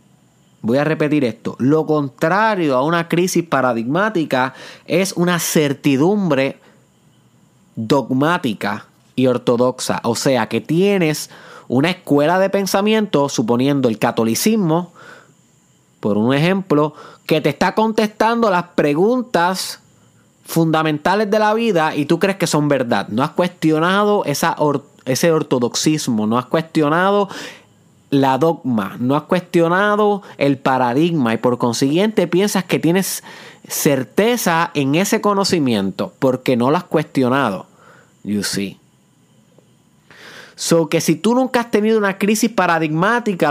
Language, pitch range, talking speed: Spanish, 140-195 Hz, 125 wpm